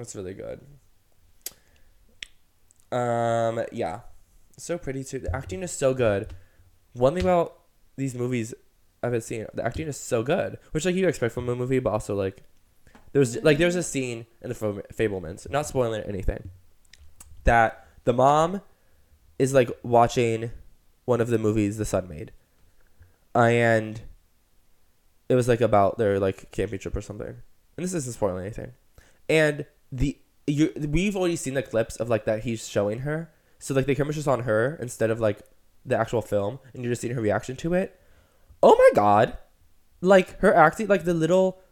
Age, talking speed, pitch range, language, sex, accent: 10-29, 175 wpm, 100-150 Hz, English, male, American